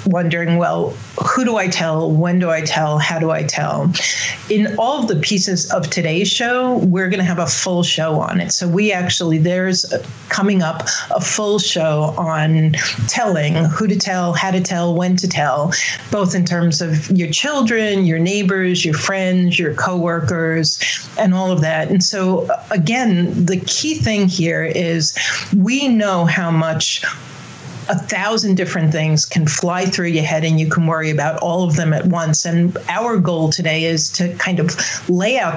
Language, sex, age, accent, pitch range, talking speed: English, female, 40-59, American, 160-190 Hz, 180 wpm